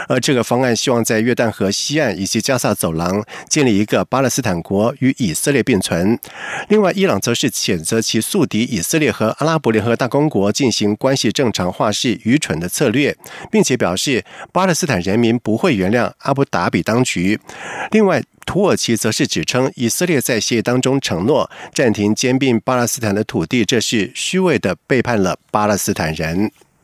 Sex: male